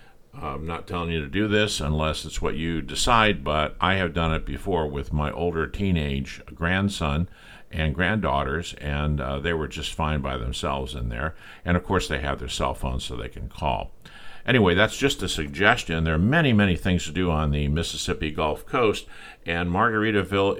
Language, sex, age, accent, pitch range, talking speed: English, male, 50-69, American, 75-95 Hz, 190 wpm